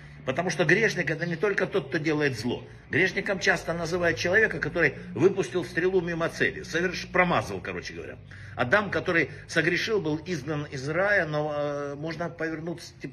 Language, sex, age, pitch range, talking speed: Russian, male, 60-79, 125-175 Hz, 150 wpm